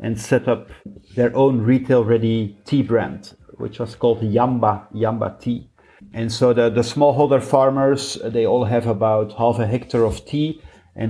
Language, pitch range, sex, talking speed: English, 115-130 Hz, male, 160 wpm